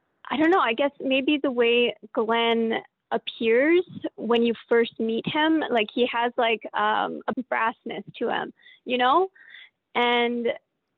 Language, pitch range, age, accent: English, 235-275 Hz, 20-39, American